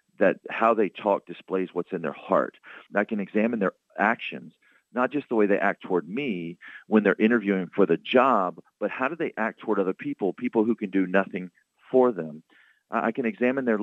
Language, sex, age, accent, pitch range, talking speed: English, male, 40-59, American, 100-120 Hz, 205 wpm